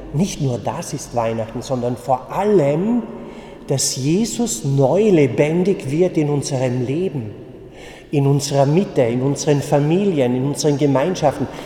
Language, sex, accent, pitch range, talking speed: German, male, German, 125-150 Hz, 130 wpm